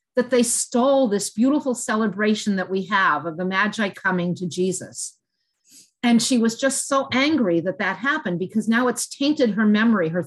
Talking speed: 180 wpm